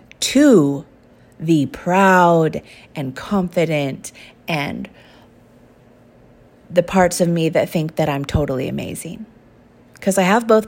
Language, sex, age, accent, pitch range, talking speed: English, female, 30-49, American, 160-210 Hz, 110 wpm